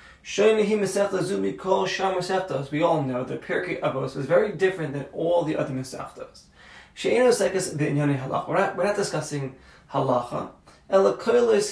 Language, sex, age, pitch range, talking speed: English, male, 20-39, 150-195 Hz, 145 wpm